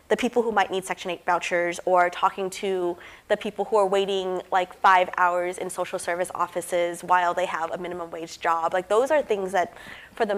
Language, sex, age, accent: English, female, 20-39, American